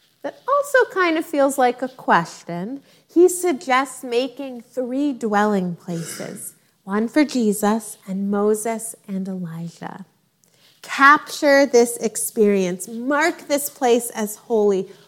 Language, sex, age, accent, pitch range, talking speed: English, female, 30-49, American, 180-255 Hz, 115 wpm